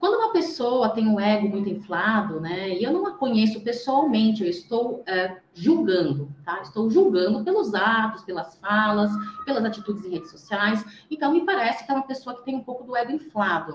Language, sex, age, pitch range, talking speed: Portuguese, female, 30-49, 200-275 Hz, 195 wpm